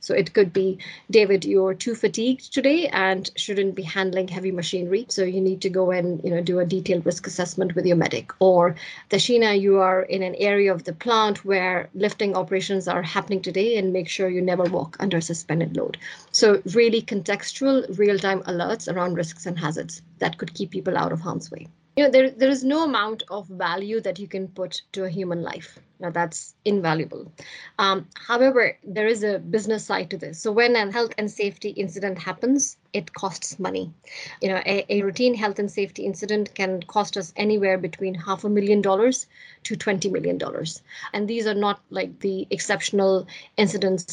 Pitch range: 180-205 Hz